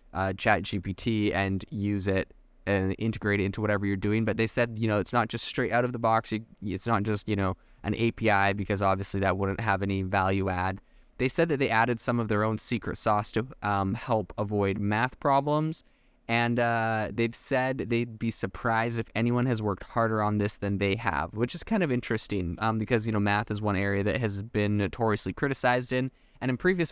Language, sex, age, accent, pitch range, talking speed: English, male, 20-39, American, 100-120 Hz, 215 wpm